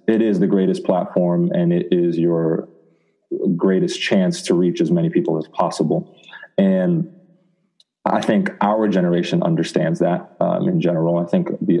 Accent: American